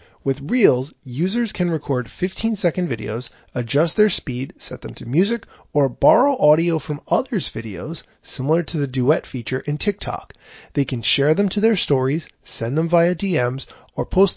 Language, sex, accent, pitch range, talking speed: English, male, American, 130-170 Hz, 165 wpm